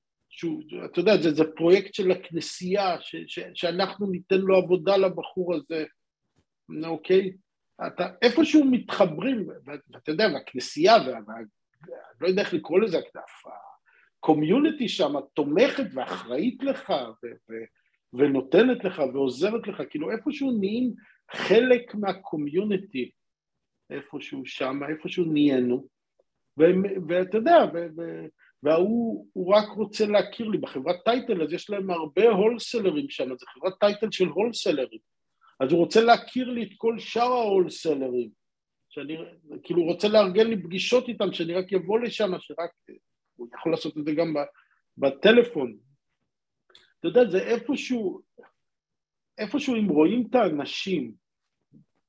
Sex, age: male, 50-69